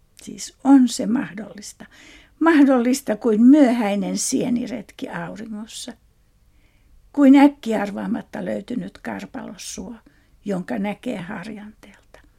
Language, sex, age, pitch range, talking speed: Finnish, female, 60-79, 210-255 Hz, 75 wpm